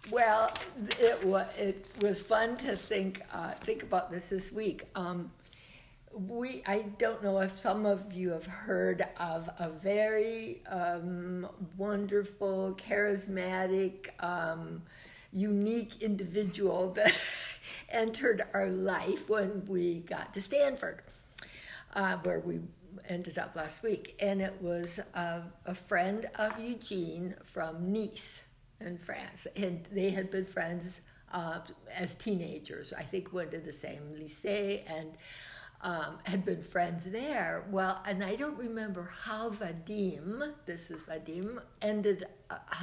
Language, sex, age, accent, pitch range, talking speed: English, female, 60-79, American, 175-205 Hz, 130 wpm